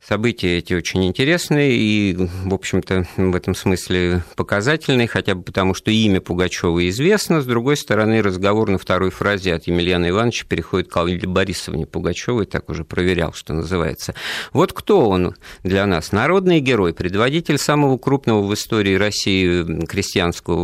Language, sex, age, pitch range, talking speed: Russian, male, 50-69, 90-135 Hz, 150 wpm